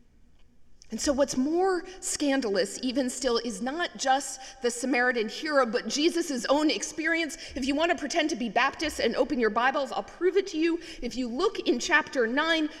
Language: English